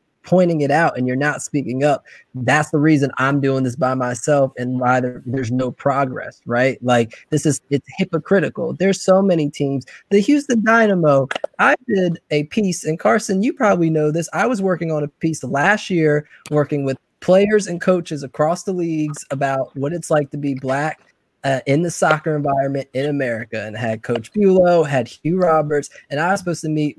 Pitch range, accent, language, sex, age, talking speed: 140-185 Hz, American, English, male, 20-39, 195 wpm